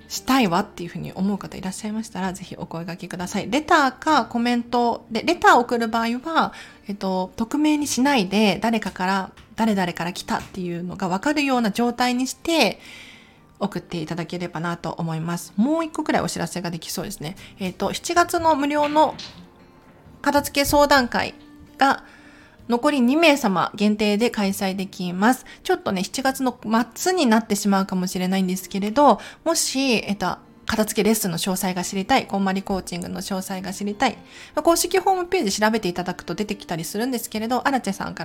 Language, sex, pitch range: Japanese, female, 185-255 Hz